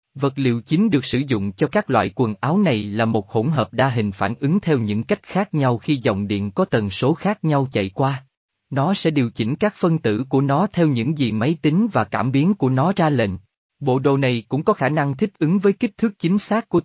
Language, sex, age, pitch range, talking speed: Vietnamese, male, 20-39, 110-160 Hz, 255 wpm